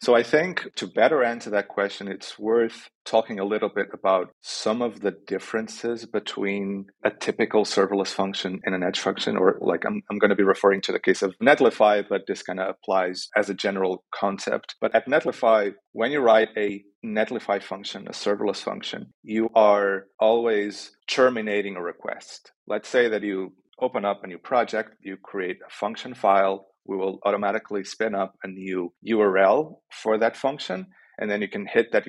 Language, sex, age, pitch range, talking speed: English, male, 30-49, 100-120 Hz, 185 wpm